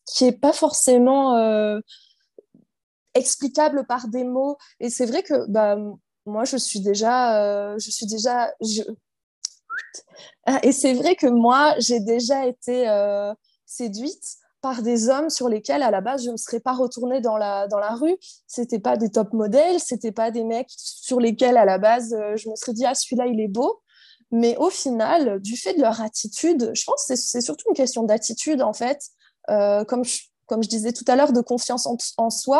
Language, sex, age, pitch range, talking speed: French, female, 20-39, 215-265 Hz, 180 wpm